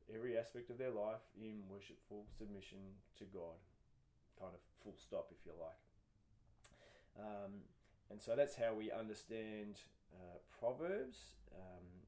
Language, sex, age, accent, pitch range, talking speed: English, male, 20-39, Australian, 95-115 Hz, 135 wpm